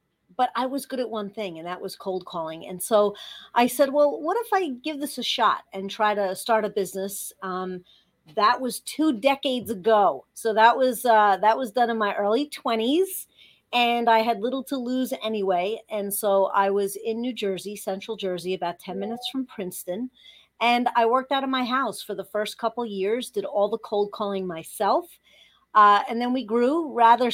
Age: 40-59